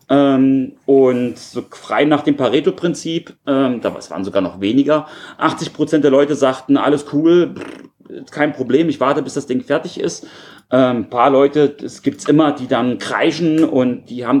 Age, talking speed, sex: 30-49, 160 wpm, male